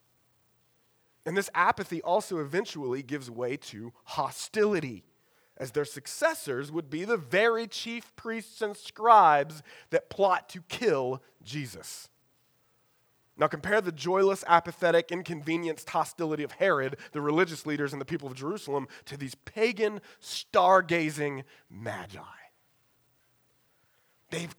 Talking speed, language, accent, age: 115 wpm, English, American, 30-49